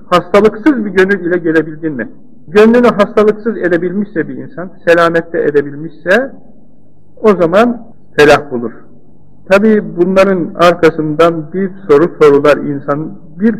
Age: 50-69